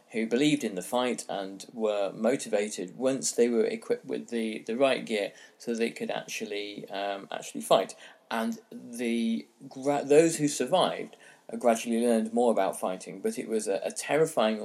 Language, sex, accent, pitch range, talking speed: English, male, British, 110-155 Hz, 165 wpm